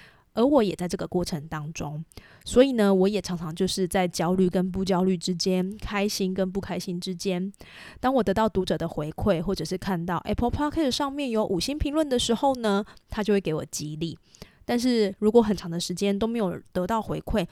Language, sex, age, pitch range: Chinese, female, 20-39, 180-235 Hz